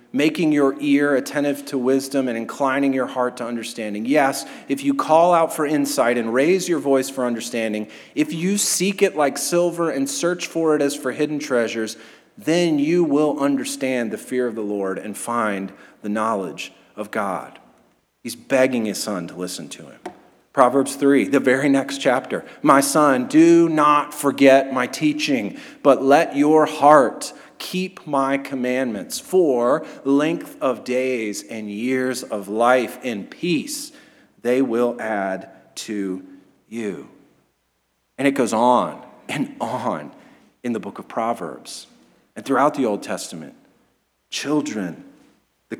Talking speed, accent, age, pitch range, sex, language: 150 wpm, American, 40-59, 115-150 Hz, male, English